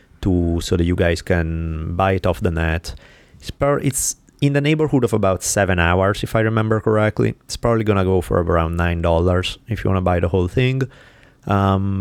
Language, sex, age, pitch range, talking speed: English, male, 30-49, 85-105 Hz, 210 wpm